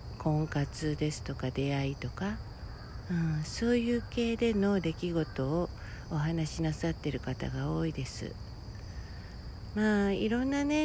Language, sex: Japanese, female